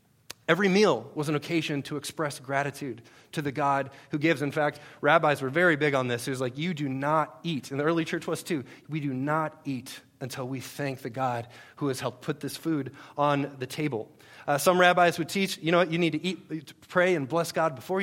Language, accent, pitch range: English, American, 135-170 Hz